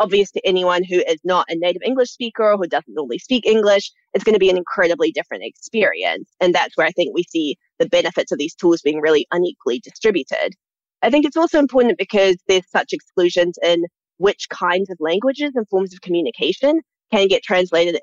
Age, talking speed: 20-39, 205 wpm